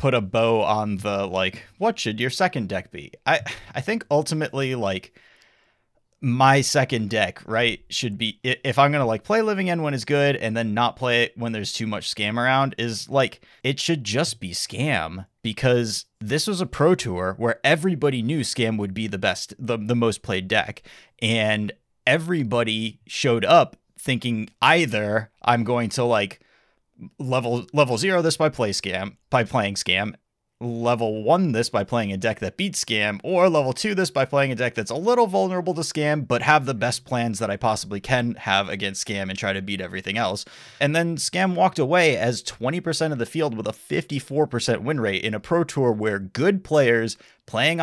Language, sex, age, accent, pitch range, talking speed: English, male, 30-49, American, 110-150 Hz, 195 wpm